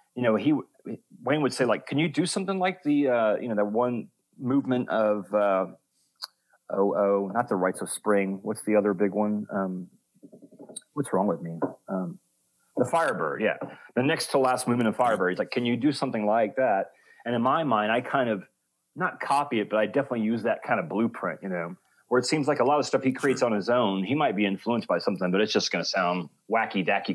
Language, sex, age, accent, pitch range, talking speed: English, male, 30-49, American, 100-135 Hz, 225 wpm